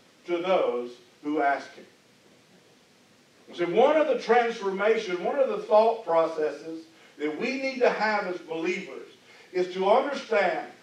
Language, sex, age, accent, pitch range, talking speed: English, male, 50-69, American, 180-280 Hz, 140 wpm